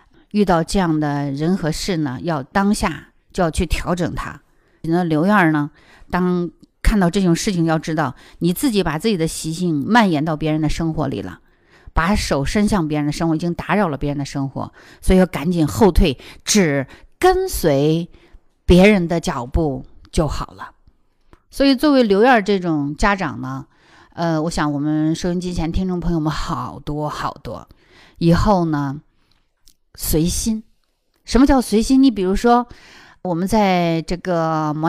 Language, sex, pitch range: Chinese, female, 155-210 Hz